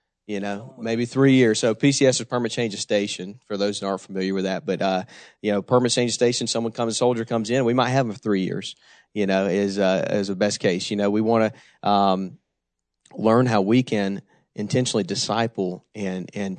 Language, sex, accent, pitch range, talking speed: English, male, American, 100-115 Hz, 220 wpm